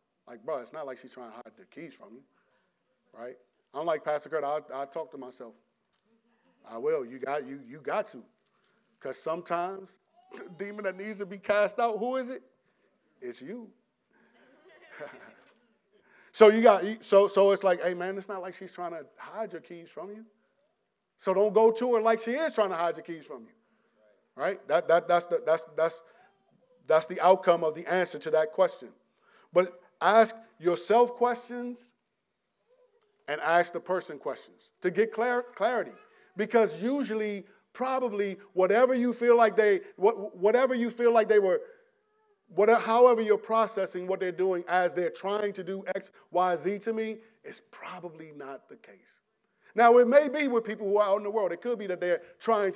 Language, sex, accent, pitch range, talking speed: English, male, American, 180-235 Hz, 190 wpm